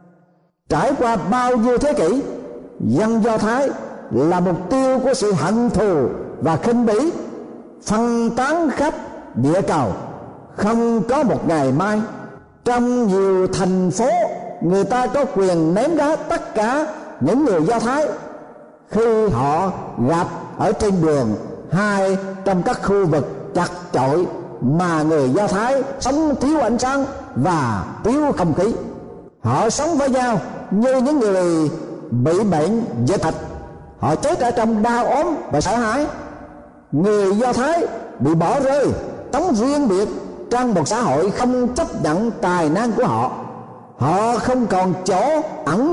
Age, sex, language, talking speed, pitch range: 60-79, male, Vietnamese, 150 wpm, 185-255 Hz